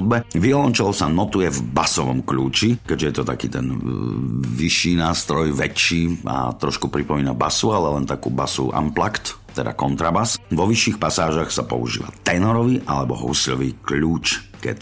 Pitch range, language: 70-90 Hz, Slovak